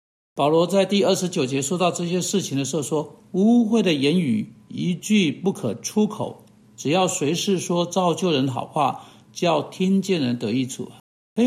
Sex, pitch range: male, 145-205 Hz